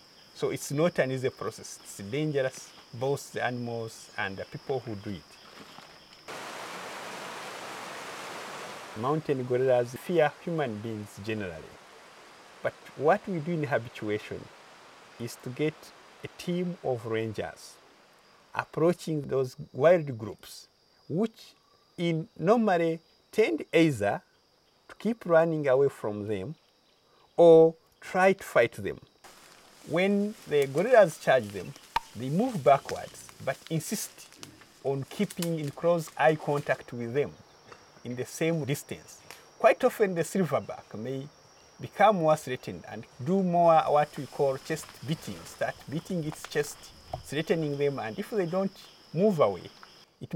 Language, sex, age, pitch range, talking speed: English, male, 50-69, 125-175 Hz, 125 wpm